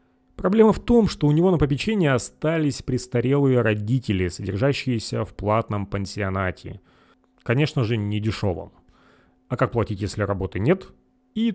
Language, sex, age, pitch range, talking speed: Russian, male, 30-49, 100-160 Hz, 135 wpm